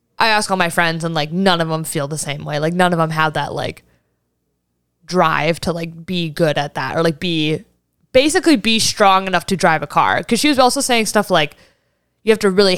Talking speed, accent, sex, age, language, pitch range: 235 wpm, American, female, 20-39, English, 160-235 Hz